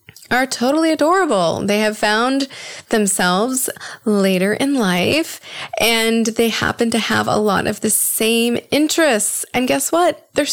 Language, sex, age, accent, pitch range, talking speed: English, female, 20-39, American, 190-255 Hz, 140 wpm